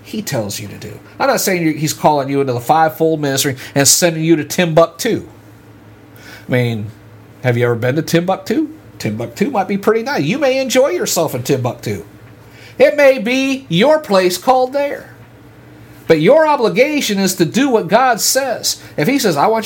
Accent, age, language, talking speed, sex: American, 50-69, English, 185 wpm, male